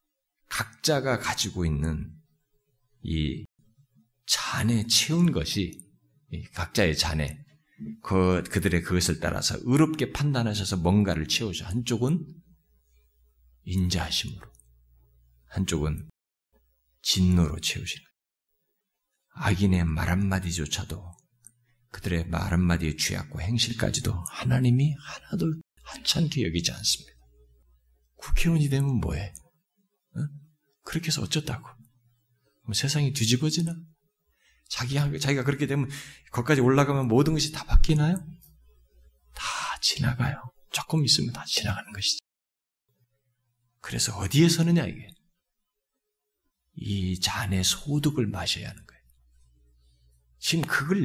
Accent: native